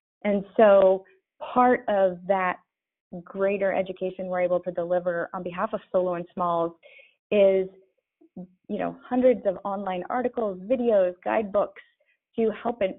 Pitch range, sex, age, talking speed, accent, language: 185-225 Hz, female, 30-49, 130 wpm, American, English